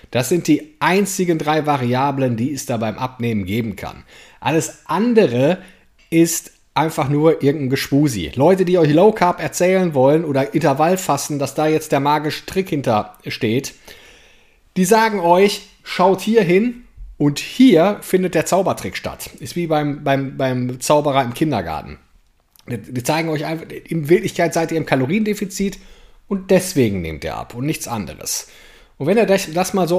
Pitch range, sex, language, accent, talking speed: 140-190 Hz, male, German, German, 160 wpm